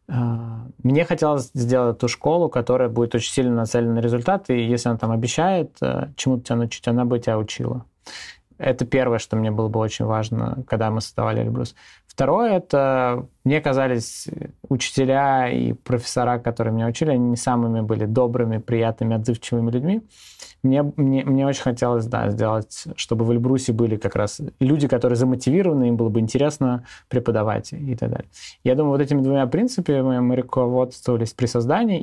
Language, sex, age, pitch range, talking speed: Russian, male, 20-39, 115-130 Hz, 165 wpm